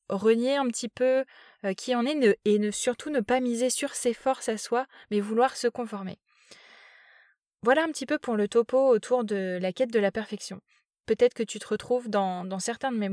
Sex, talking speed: female, 210 wpm